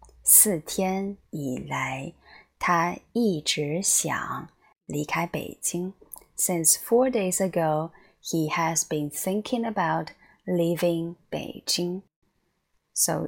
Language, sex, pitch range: Chinese, female, 160-210 Hz